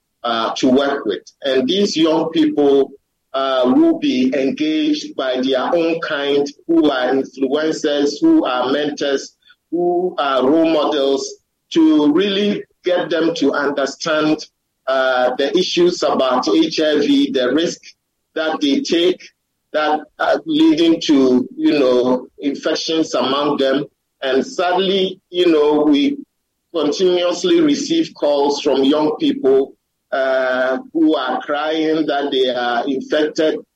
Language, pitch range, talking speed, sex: English, 135-205 Hz, 125 wpm, male